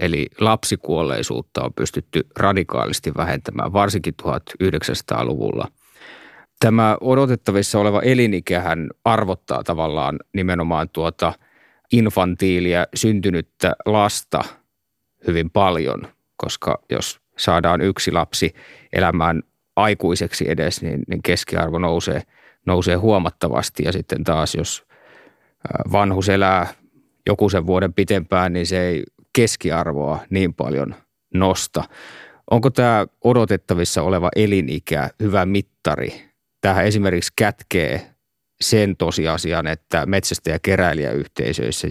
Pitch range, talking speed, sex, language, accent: 85-100 Hz, 95 wpm, male, Finnish, native